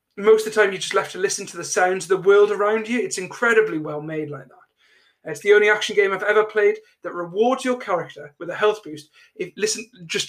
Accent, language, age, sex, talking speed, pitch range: British, English, 30-49, male, 245 wpm, 160-220 Hz